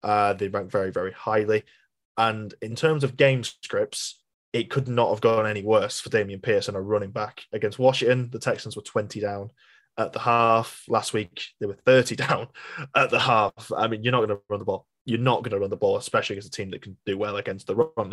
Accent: British